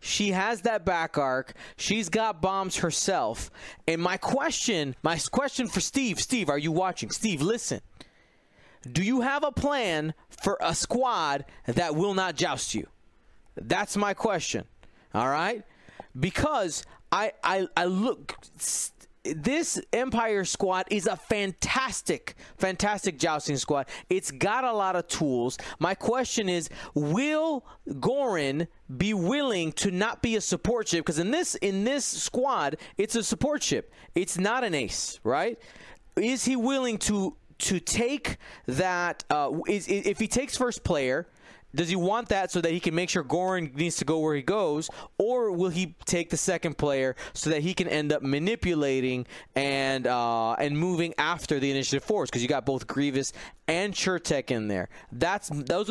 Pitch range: 155-220 Hz